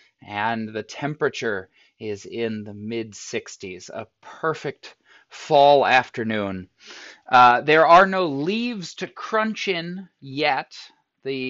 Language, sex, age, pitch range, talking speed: English, male, 30-49, 115-160 Hz, 110 wpm